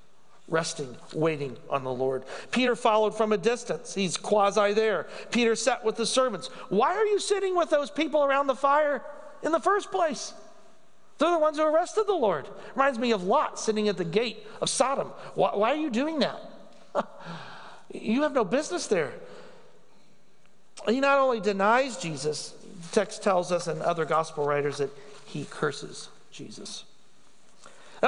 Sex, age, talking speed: male, 50-69, 165 wpm